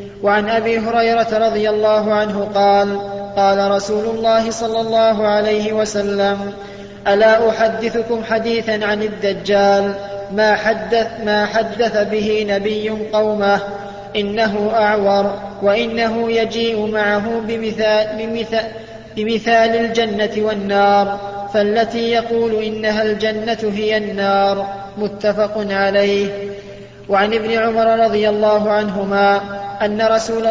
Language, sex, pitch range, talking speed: Arabic, male, 200-225 Hz, 100 wpm